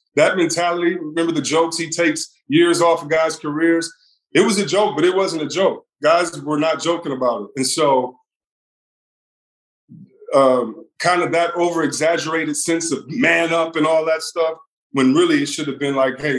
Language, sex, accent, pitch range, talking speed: English, male, American, 135-170 Hz, 185 wpm